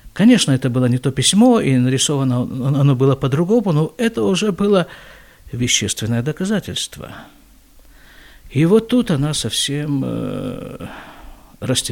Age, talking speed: 50-69, 115 wpm